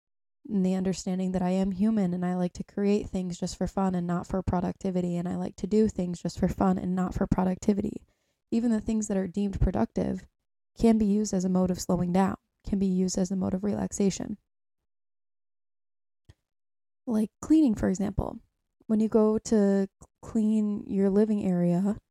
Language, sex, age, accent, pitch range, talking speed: English, female, 20-39, American, 175-205 Hz, 185 wpm